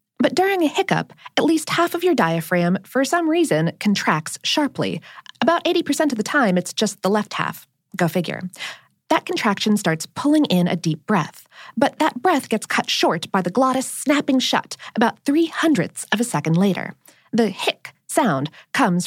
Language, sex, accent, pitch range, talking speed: English, female, American, 175-270 Hz, 180 wpm